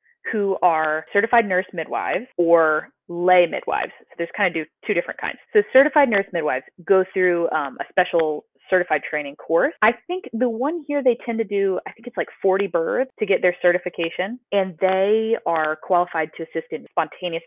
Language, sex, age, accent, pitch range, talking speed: English, female, 20-39, American, 165-235 Hz, 185 wpm